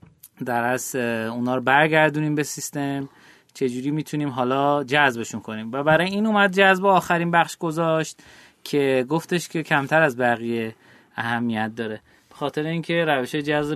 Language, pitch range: Persian, 140-185 Hz